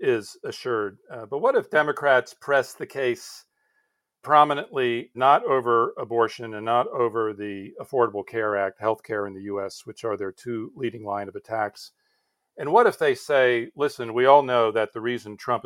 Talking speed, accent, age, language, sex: 180 wpm, American, 40-59, English, male